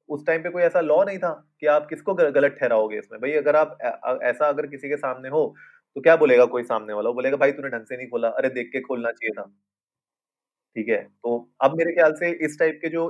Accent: native